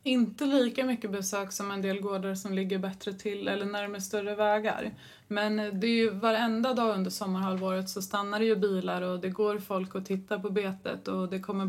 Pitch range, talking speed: 190-225 Hz, 205 wpm